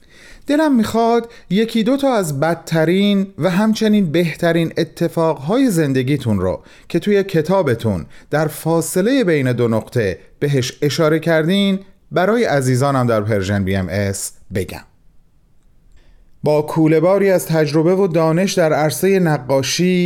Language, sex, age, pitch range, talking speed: Persian, male, 40-59, 125-185 Hz, 115 wpm